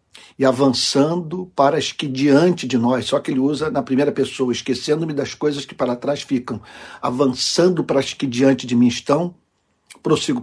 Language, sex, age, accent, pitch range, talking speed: Portuguese, male, 60-79, Brazilian, 125-145 Hz, 180 wpm